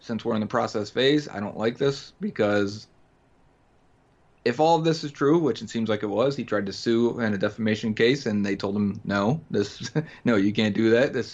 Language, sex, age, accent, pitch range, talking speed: English, male, 30-49, American, 110-130 Hz, 230 wpm